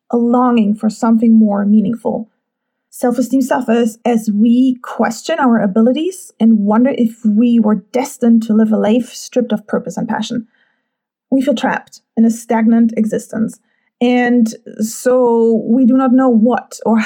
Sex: female